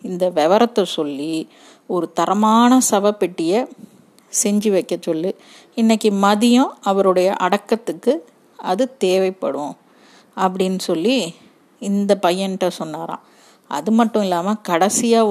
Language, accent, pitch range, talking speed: Tamil, native, 175-225 Hz, 95 wpm